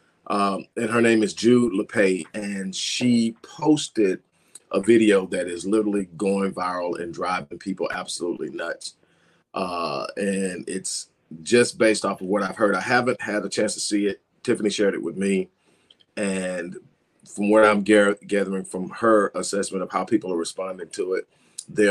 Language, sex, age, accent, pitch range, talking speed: English, male, 40-59, American, 95-115 Hz, 170 wpm